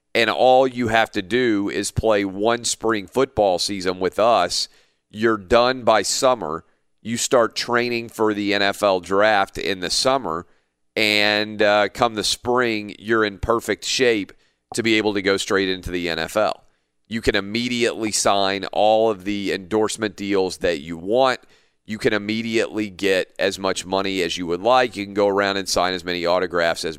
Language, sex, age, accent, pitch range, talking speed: English, male, 40-59, American, 95-115 Hz, 175 wpm